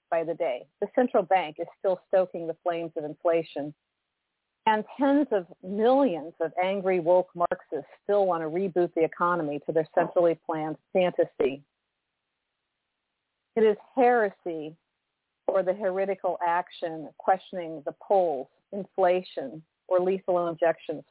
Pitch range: 165-195 Hz